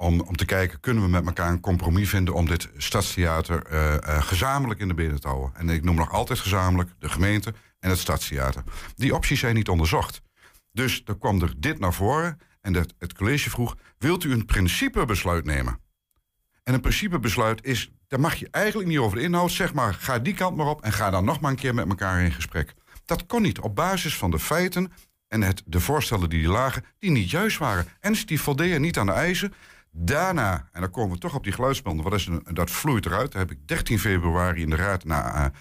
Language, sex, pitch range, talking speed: Dutch, male, 85-130 Hz, 220 wpm